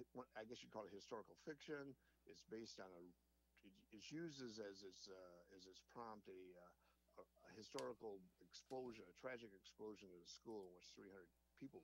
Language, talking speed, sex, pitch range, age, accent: English, 170 wpm, male, 85-115 Hz, 60-79, American